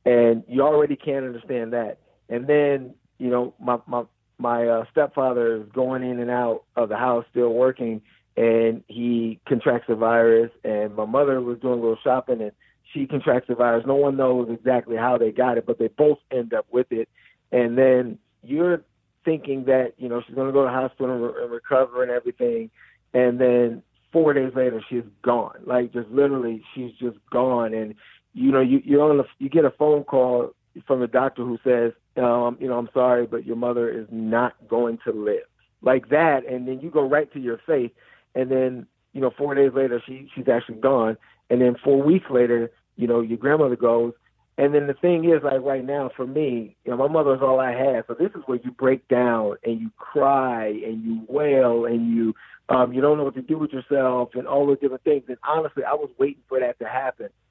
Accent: American